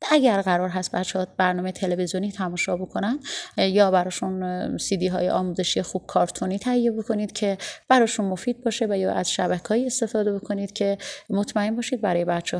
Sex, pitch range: female, 180-205 Hz